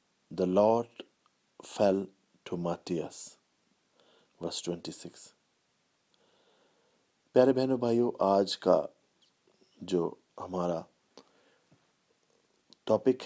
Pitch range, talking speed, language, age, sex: 90-115 Hz, 70 wpm, English, 50-69, male